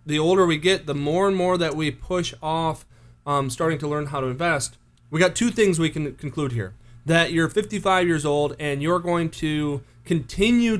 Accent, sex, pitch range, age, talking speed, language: American, male, 125-175 Hz, 30-49, 205 wpm, English